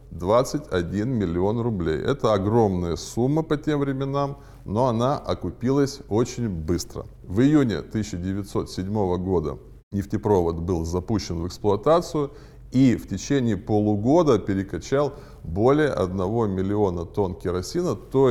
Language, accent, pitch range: Russian, native, 95-130 Hz